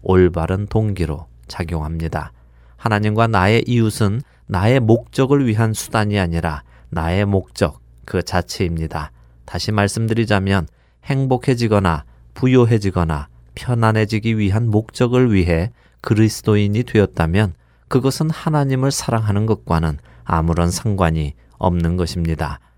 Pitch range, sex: 80-115 Hz, male